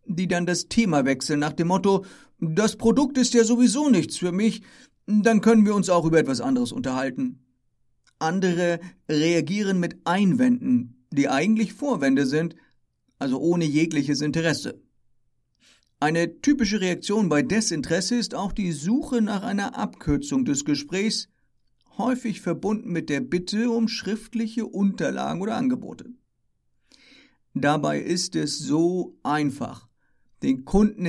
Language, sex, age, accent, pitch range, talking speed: German, male, 50-69, German, 155-220 Hz, 130 wpm